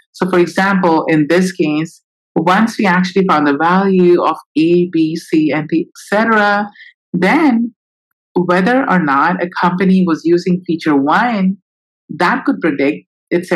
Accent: Indian